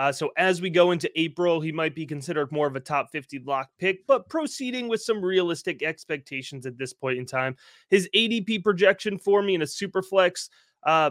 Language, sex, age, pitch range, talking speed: English, male, 30-49, 145-180 Hz, 205 wpm